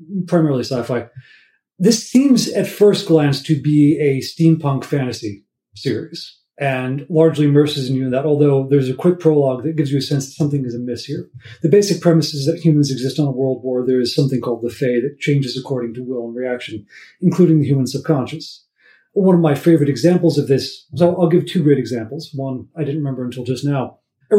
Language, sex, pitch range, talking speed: English, male, 130-165 Hz, 205 wpm